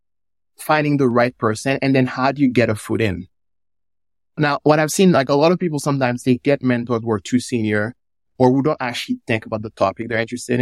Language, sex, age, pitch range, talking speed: English, male, 20-39, 95-130 Hz, 225 wpm